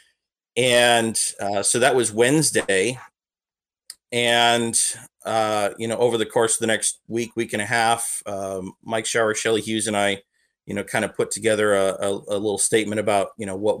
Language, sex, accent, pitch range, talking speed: English, male, American, 100-115 Hz, 185 wpm